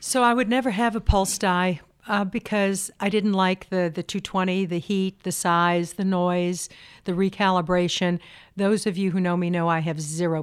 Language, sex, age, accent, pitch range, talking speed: English, female, 60-79, American, 180-205 Hz, 195 wpm